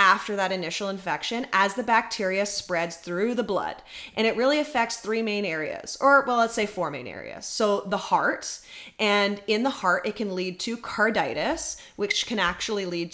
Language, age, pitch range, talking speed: English, 30-49, 175-220 Hz, 185 wpm